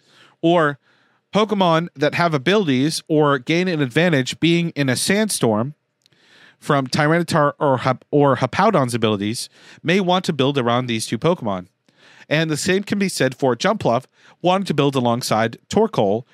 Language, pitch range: English, 135-180 Hz